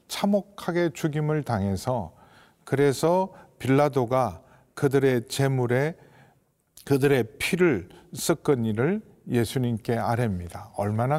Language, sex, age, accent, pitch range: Korean, male, 50-69, native, 120-155 Hz